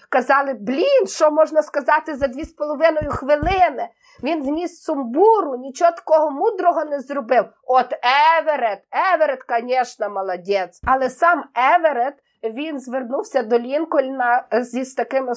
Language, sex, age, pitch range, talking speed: Ukrainian, female, 20-39, 230-285 Hz, 125 wpm